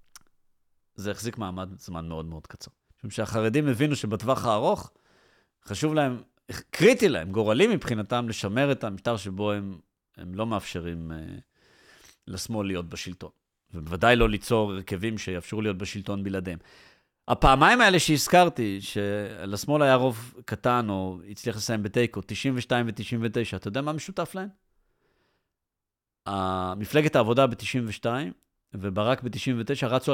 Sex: male